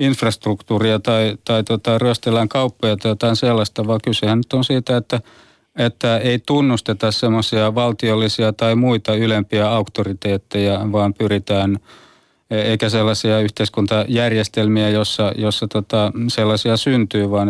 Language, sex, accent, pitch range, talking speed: Finnish, male, native, 105-120 Hz, 125 wpm